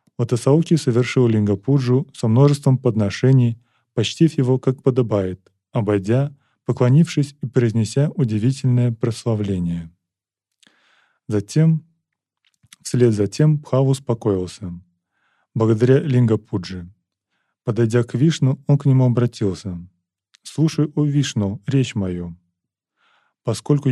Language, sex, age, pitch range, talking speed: Russian, male, 20-39, 100-135 Hz, 95 wpm